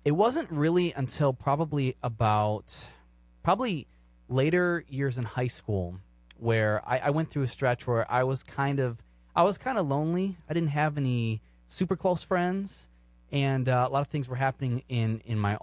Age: 20-39